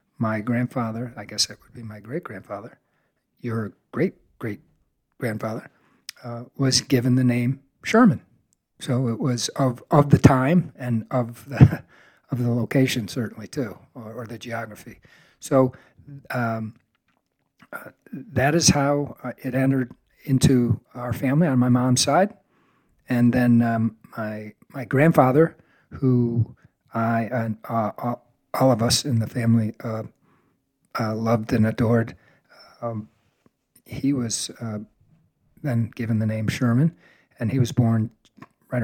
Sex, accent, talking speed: male, American, 135 wpm